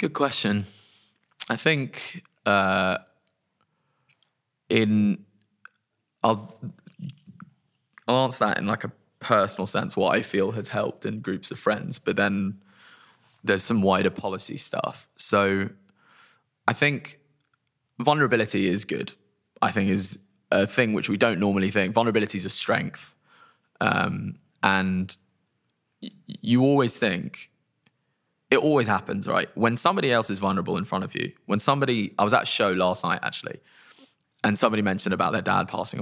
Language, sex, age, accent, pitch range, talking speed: English, male, 20-39, British, 100-130 Hz, 145 wpm